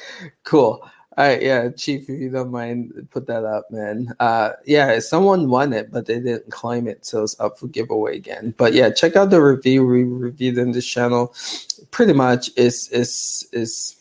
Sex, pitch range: male, 120-140 Hz